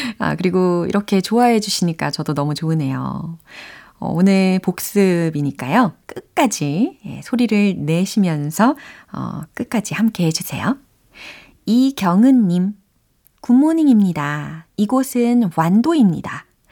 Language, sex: Korean, female